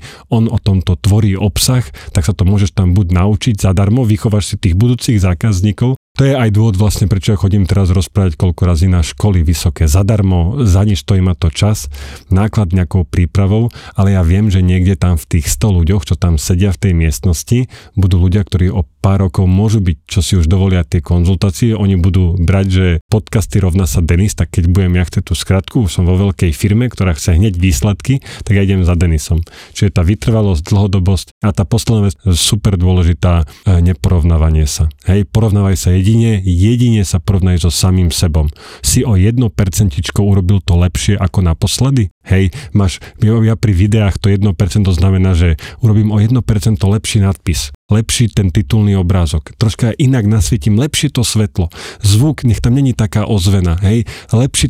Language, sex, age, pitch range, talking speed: Slovak, male, 40-59, 95-110 Hz, 180 wpm